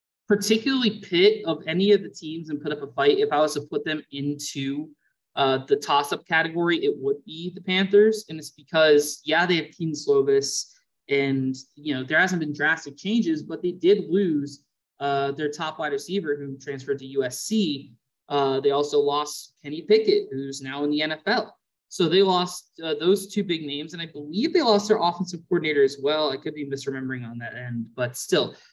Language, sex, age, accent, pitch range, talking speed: English, male, 20-39, American, 140-185 Hz, 200 wpm